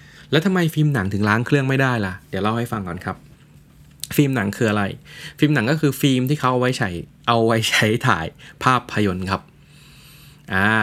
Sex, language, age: male, Thai, 20-39